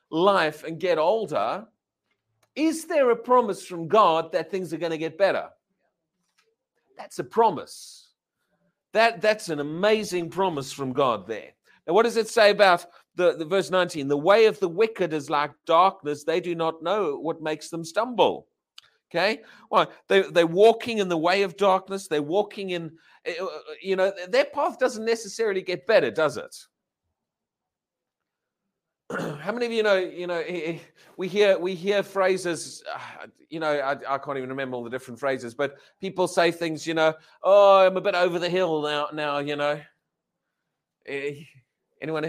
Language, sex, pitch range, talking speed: English, male, 155-195 Hz, 170 wpm